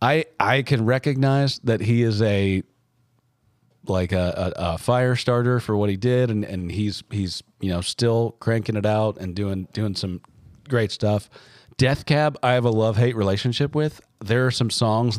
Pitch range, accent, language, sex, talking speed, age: 100-125 Hz, American, English, male, 185 wpm, 40-59